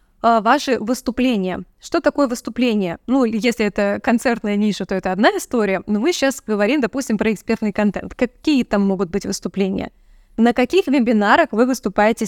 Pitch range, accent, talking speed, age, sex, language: 210-265 Hz, native, 155 wpm, 20-39, female, Russian